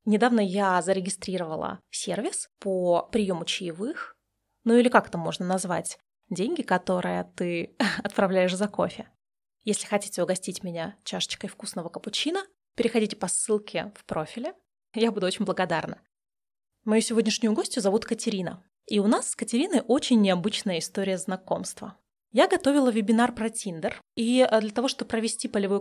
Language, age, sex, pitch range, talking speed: Russian, 20-39, female, 190-240 Hz, 140 wpm